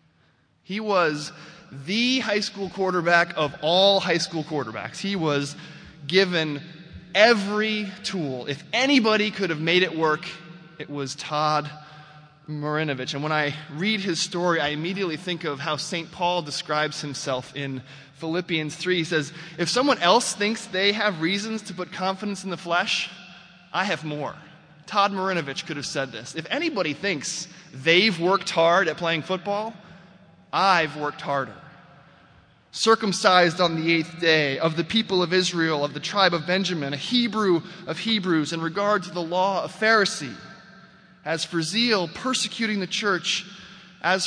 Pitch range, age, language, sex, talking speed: 150-190 Hz, 20-39, English, male, 155 wpm